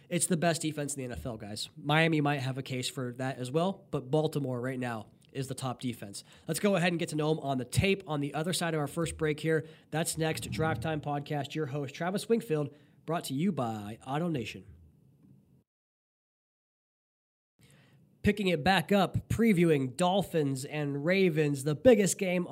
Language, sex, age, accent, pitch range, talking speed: English, male, 20-39, American, 145-175 Hz, 185 wpm